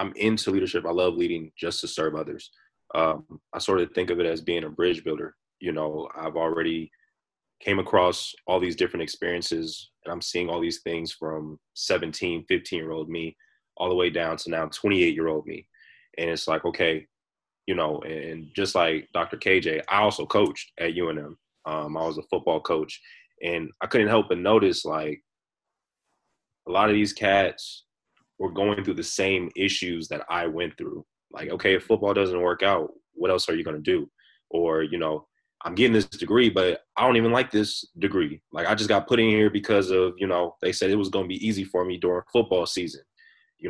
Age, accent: 20-39, American